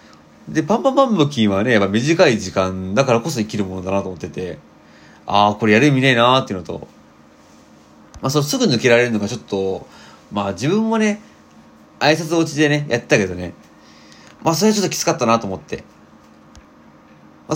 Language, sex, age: Japanese, male, 30-49